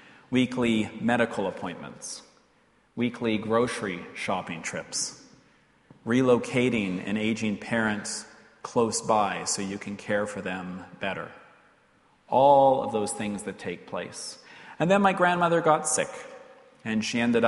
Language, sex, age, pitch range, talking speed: English, male, 40-59, 110-155 Hz, 125 wpm